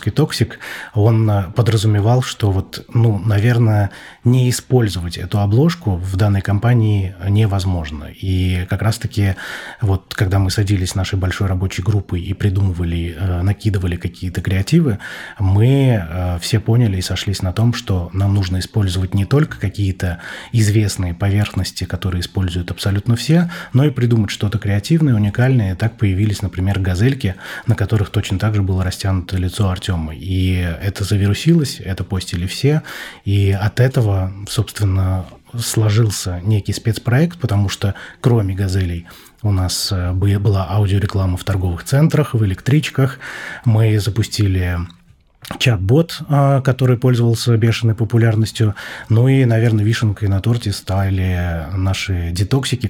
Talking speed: 130 wpm